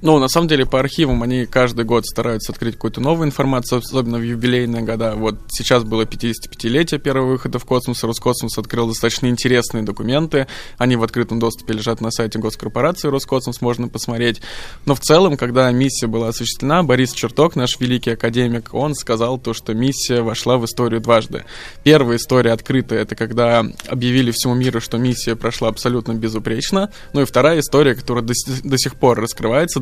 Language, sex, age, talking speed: Russian, male, 20-39, 170 wpm